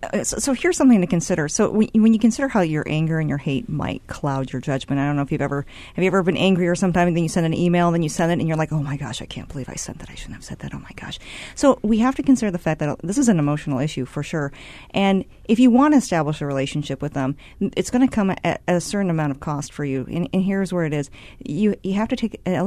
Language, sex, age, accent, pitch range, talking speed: English, female, 40-59, American, 150-200 Hz, 290 wpm